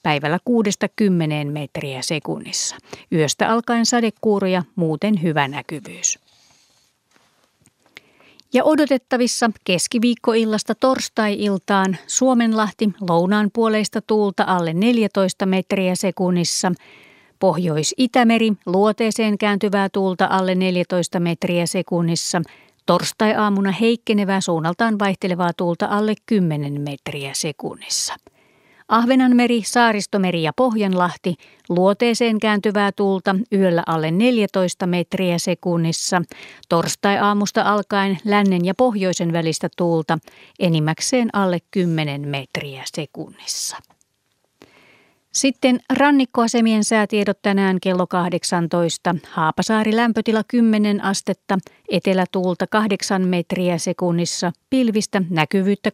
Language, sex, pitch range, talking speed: Finnish, female, 175-215 Hz, 85 wpm